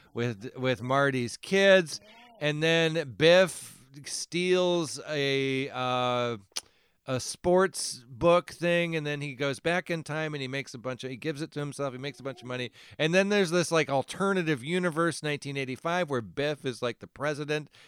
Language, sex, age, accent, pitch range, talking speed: English, male, 40-59, American, 120-155 Hz, 175 wpm